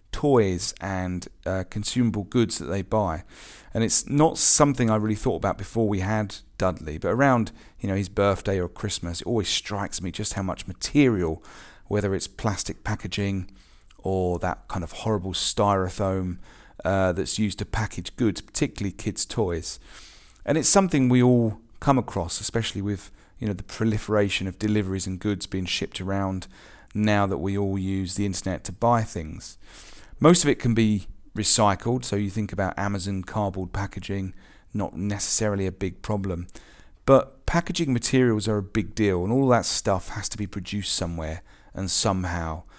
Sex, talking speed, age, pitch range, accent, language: male, 170 wpm, 40-59, 95-115 Hz, British, English